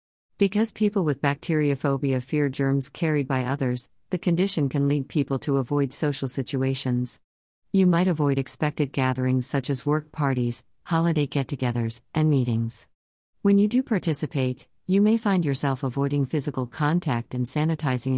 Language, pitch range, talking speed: English, 130-160 Hz, 150 wpm